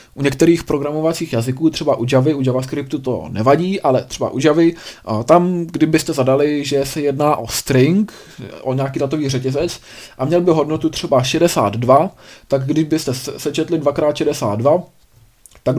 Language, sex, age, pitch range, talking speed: Czech, male, 20-39, 120-155 Hz, 145 wpm